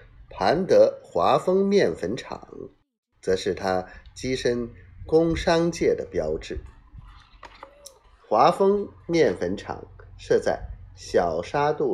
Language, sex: Chinese, male